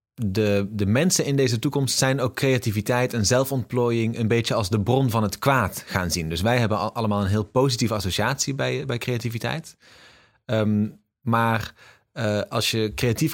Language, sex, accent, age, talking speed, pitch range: English, male, Dutch, 30-49, 165 wpm, 100-125 Hz